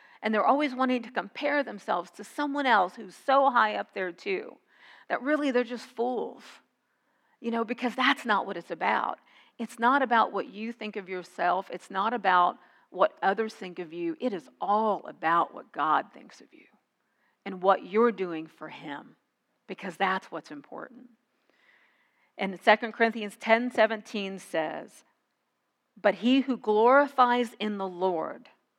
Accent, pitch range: American, 190-245 Hz